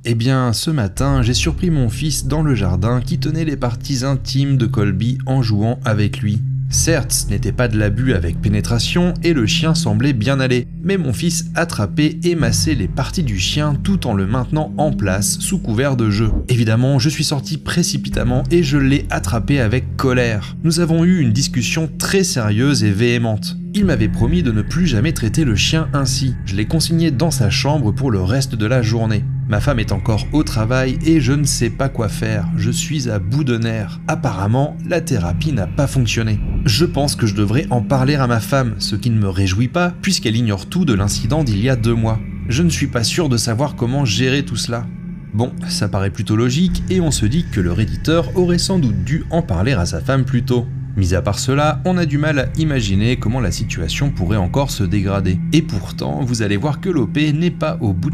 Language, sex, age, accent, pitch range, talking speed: French, male, 30-49, French, 110-155 Hz, 220 wpm